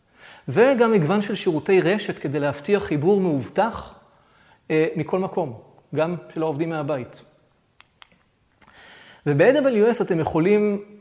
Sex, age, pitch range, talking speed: male, 30-49, 155-205 Hz, 100 wpm